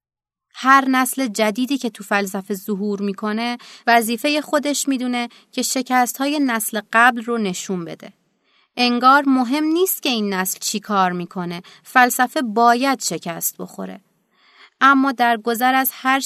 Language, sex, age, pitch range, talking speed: Persian, female, 30-49, 210-260 Hz, 135 wpm